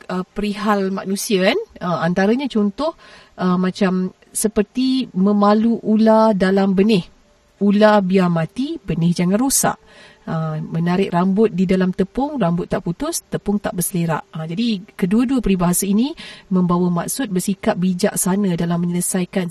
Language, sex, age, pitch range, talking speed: Malay, female, 40-59, 180-215 Hz, 130 wpm